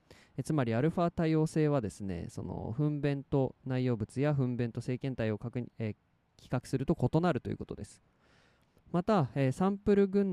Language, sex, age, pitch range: Japanese, male, 20-39, 115-165 Hz